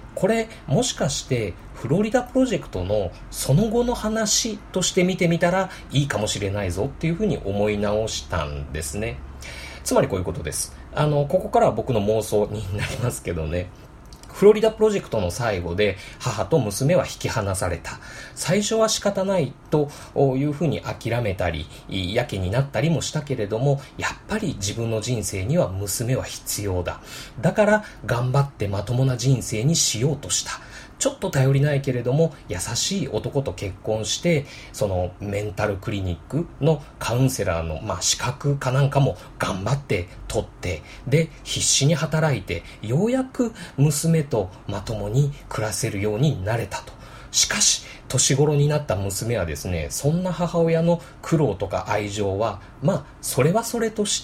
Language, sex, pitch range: Japanese, male, 105-155 Hz